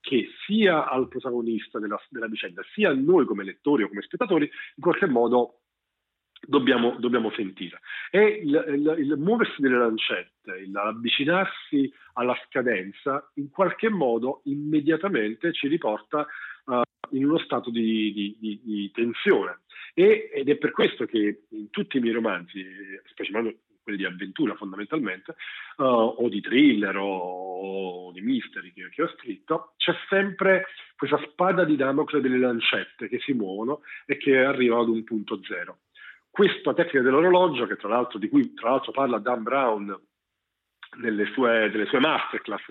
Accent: native